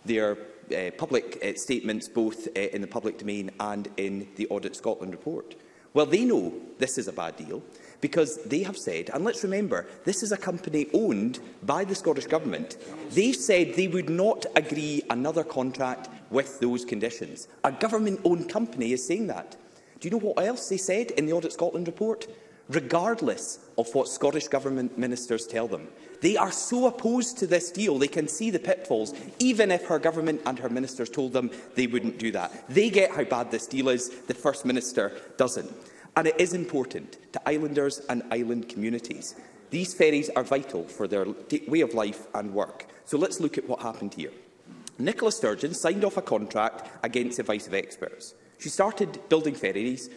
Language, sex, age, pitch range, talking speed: English, male, 30-49, 120-185 Hz, 185 wpm